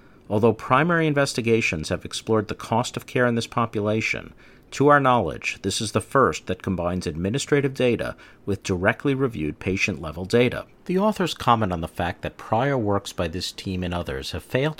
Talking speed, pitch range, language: 180 wpm, 95-130 Hz, English